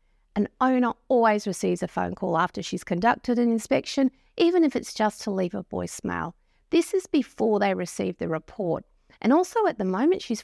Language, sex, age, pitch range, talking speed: English, female, 50-69, 200-285 Hz, 190 wpm